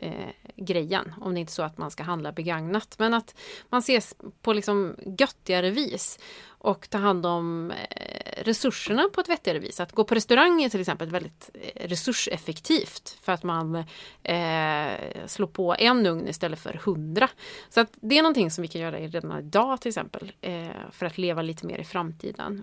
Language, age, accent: Swedish, 30-49, native